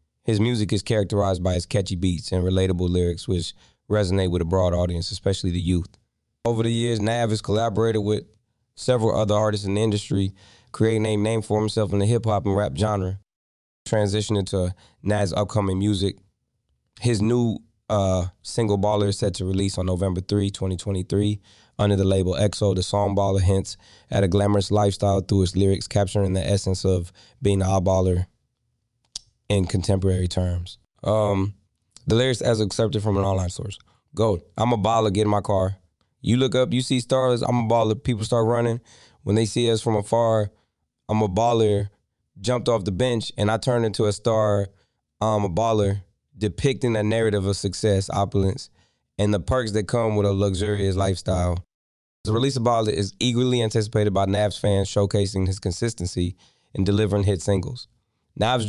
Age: 20-39